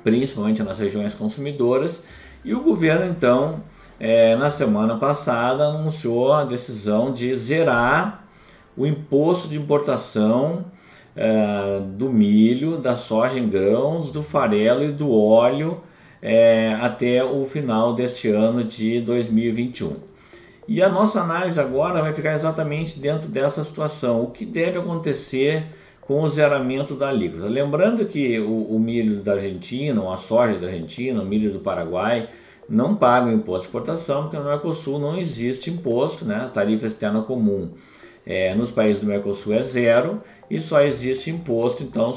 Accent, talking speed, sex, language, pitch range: Brazilian, 145 wpm, male, Portuguese, 110-150 Hz